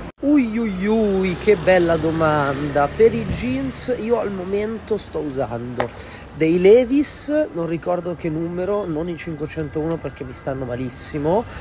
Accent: native